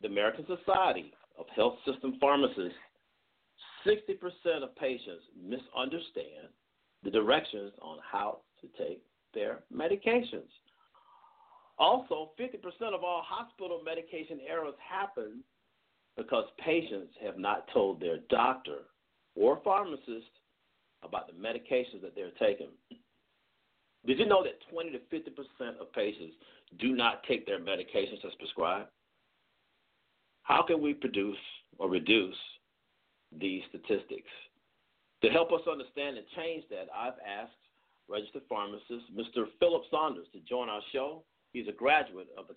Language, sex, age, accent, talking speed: English, male, 50-69, American, 125 wpm